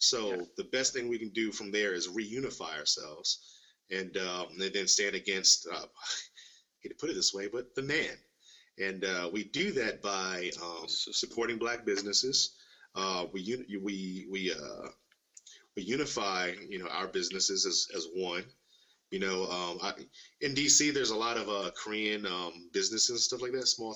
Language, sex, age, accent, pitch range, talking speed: English, male, 30-49, American, 95-135 Hz, 180 wpm